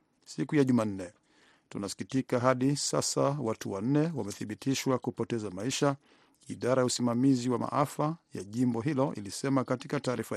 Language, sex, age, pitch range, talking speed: Swahili, male, 50-69, 115-140 Hz, 125 wpm